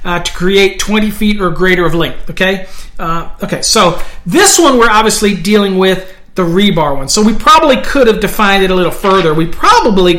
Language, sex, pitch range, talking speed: English, male, 160-210 Hz, 200 wpm